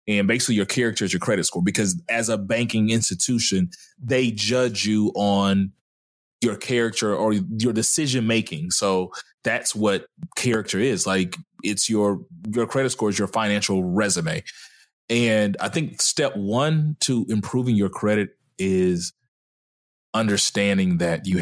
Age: 30-49